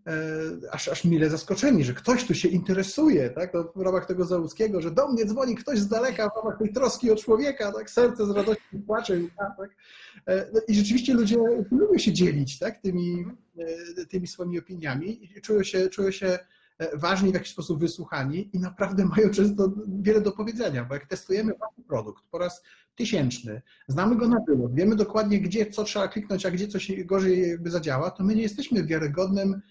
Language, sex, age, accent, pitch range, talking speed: Polish, male, 30-49, native, 170-210 Hz, 180 wpm